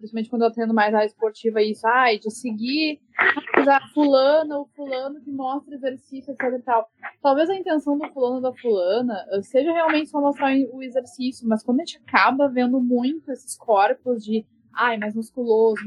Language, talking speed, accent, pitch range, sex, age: Portuguese, 180 wpm, Brazilian, 215-275 Hz, female, 10-29